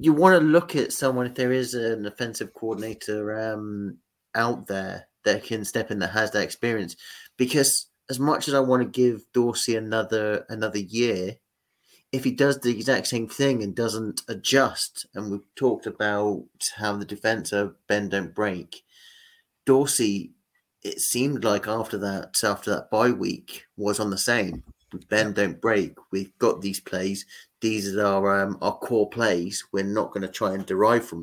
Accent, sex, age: British, male, 30-49